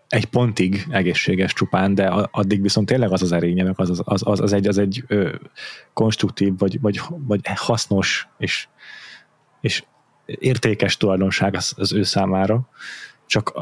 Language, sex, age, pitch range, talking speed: Hungarian, male, 30-49, 100-115 Hz, 145 wpm